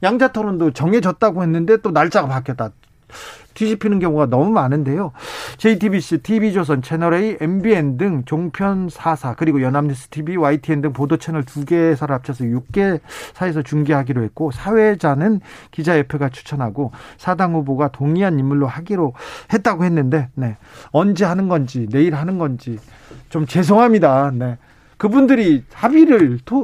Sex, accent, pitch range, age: male, native, 140-205 Hz, 40-59